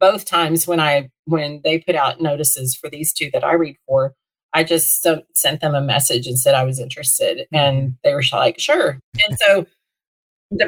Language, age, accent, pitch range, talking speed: English, 40-59, American, 160-220 Hz, 195 wpm